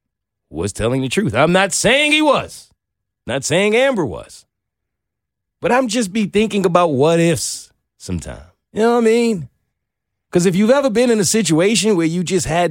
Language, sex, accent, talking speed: English, male, American, 185 wpm